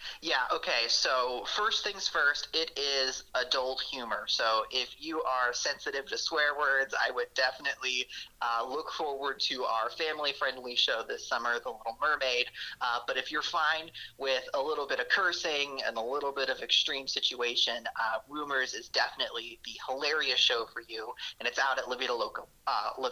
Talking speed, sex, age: 175 wpm, male, 30-49